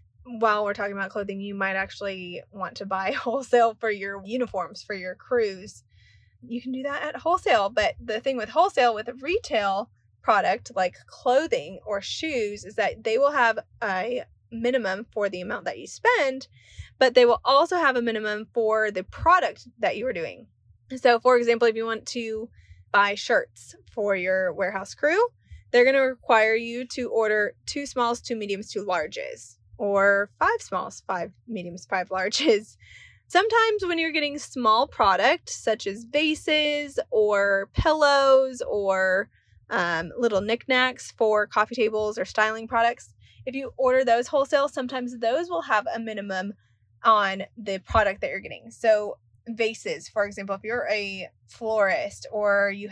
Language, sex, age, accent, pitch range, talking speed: English, female, 20-39, American, 195-265 Hz, 165 wpm